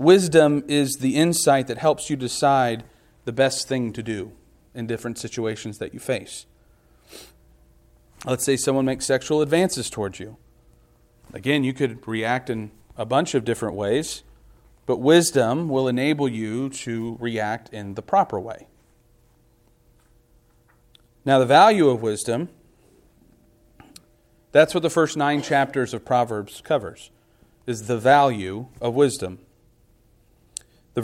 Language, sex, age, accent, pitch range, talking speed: English, male, 40-59, American, 115-145 Hz, 130 wpm